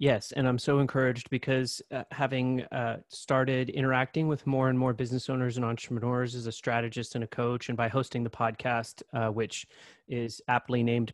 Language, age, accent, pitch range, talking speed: English, 30-49, American, 120-135 Hz, 190 wpm